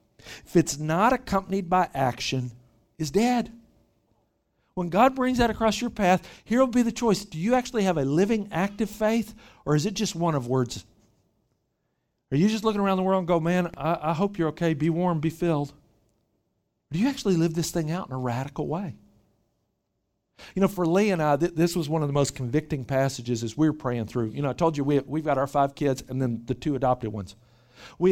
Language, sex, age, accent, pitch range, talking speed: English, male, 50-69, American, 115-165 Hz, 220 wpm